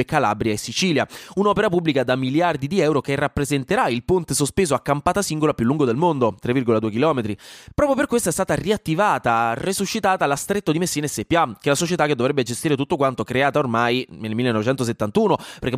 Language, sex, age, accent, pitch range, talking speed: Italian, male, 20-39, native, 120-170 Hz, 190 wpm